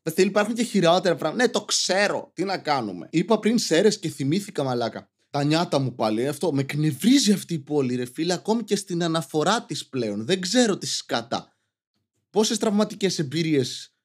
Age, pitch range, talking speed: 20-39, 140-190 Hz, 180 wpm